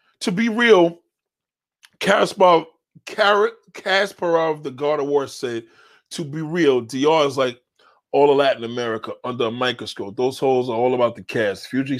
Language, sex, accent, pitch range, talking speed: English, male, American, 125-200 Hz, 150 wpm